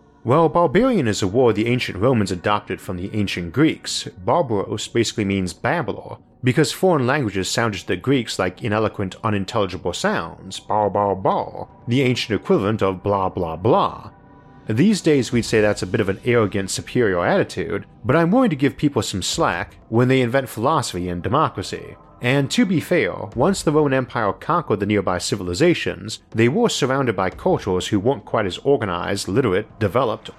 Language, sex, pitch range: English, male, 95-135 Hz